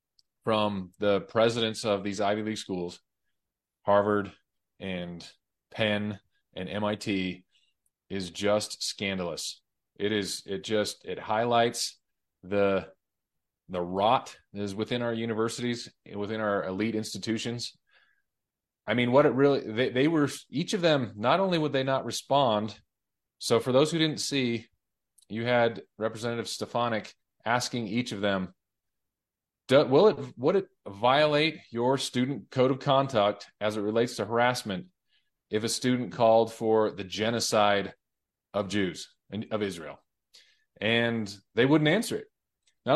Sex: male